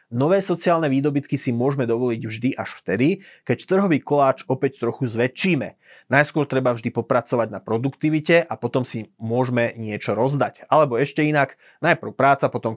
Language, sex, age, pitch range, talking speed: Slovak, male, 30-49, 125-155 Hz, 155 wpm